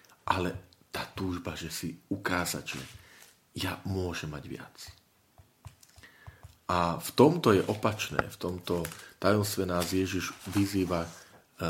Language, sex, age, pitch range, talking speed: Slovak, male, 40-59, 90-115 Hz, 110 wpm